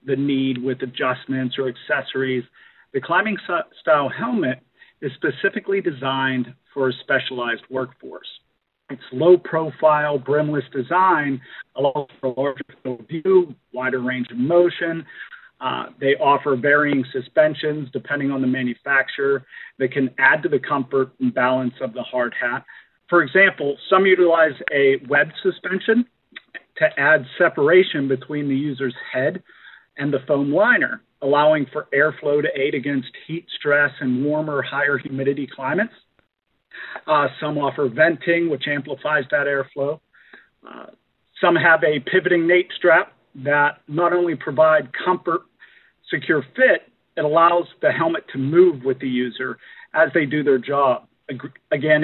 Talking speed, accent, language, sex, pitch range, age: 140 wpm, American, English, male, 135-165 Hz, 40-59